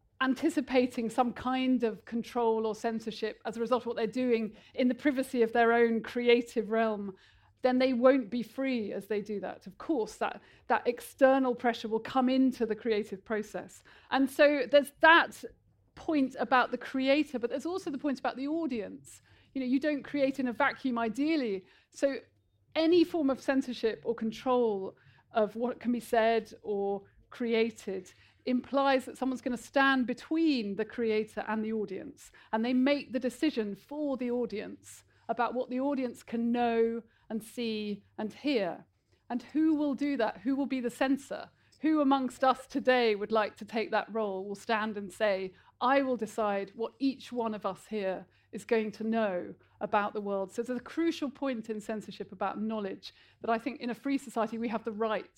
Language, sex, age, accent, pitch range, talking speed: English, female, 40-59, British, 220-265 Hz, 185 wpm